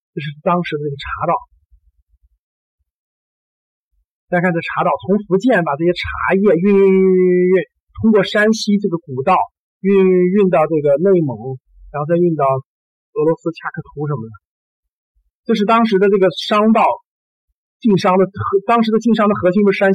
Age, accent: 50-69, native